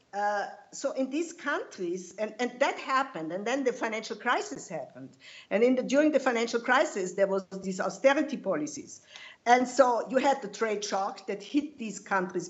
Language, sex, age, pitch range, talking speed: English, female, 50-69, 210-295 Hz, 175 wpm